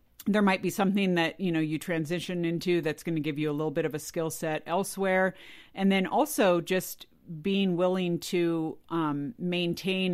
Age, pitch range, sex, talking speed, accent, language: 50-69, 160-195 Hz, female, 190 wpm, American, English